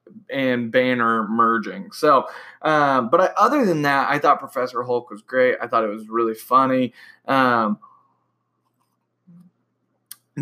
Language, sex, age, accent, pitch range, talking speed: English, male, 20-39, American, 115-145 Hz, 135 wpm